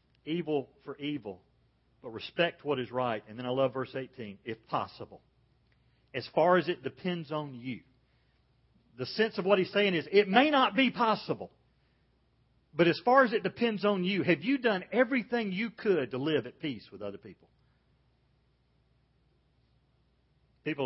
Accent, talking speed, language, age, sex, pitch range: American, 165 wpm, English, 40-59, male, 125-200 Hz